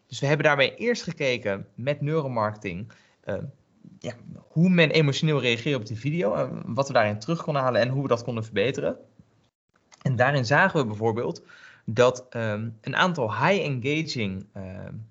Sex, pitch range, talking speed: male, 115-155 Hz, 155 wpm